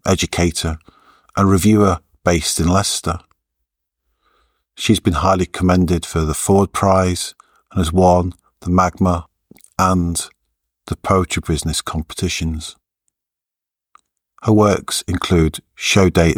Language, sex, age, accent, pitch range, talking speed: English, male, 50-69, British, 80-90 Hz, 105 wpm